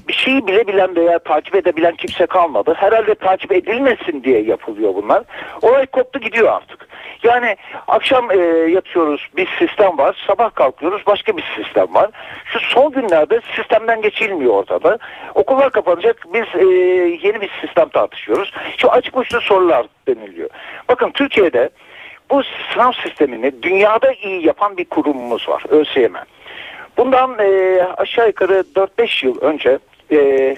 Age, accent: 60-79, native